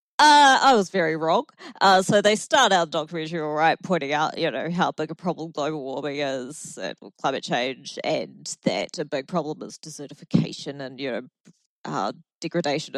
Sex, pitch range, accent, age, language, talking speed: female, 150-190 Hz, Australian, 20-39, English, 180 wpm